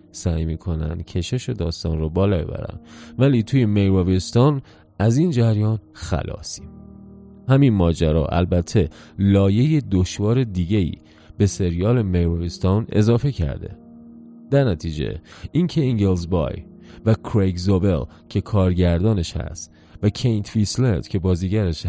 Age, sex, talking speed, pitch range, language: 30-49, male, 115 wpm, 80-115 Hz, Persian